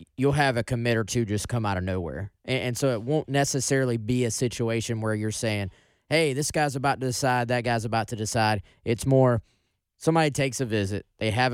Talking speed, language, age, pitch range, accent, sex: 220 wpm, English, 20-39, 105-125 Hz, American, male